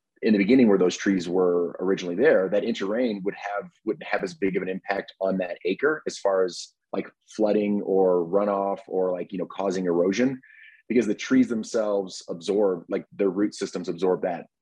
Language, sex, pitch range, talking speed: English, male, 90-100 Hz, 195 wpm